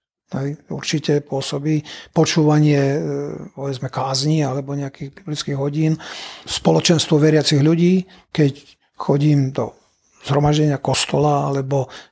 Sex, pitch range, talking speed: male, 140-160 Hz, 95 wpm